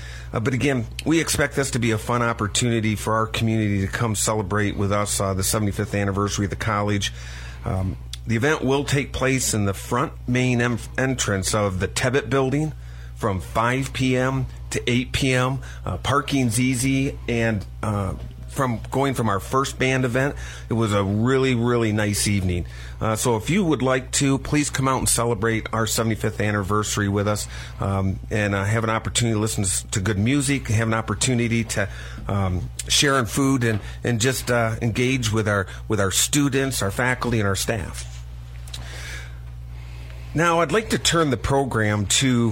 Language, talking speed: English, 170 wpm